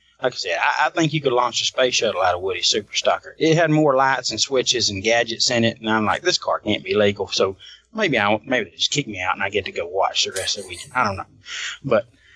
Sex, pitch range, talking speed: male, 110-140 Hz, 275 wpm